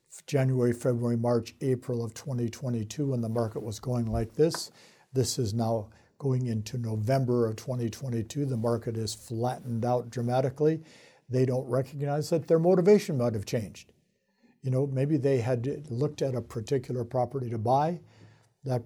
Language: English